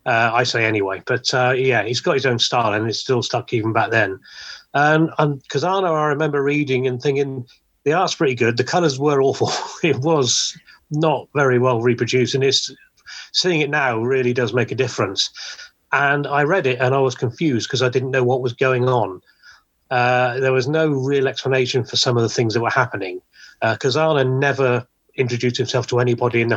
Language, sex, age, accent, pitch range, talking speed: English, male, 30-49, British, 120-140 Hz, 200 wpm